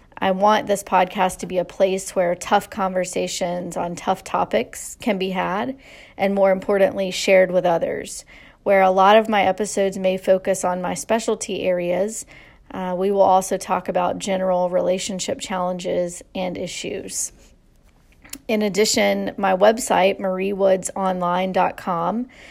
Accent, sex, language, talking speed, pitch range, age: American, female, English, 135 wpm, 185-200 Hz, 40-59